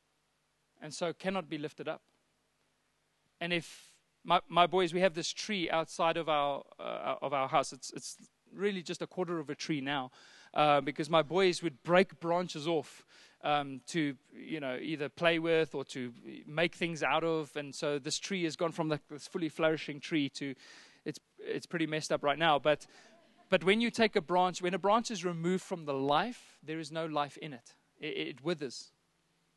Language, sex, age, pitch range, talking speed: English, male, 30-49, 150-185 Hz, 195 wpm